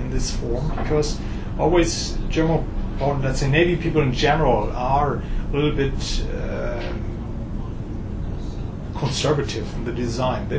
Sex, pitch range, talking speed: male, 110-150 Hz, 120 wpm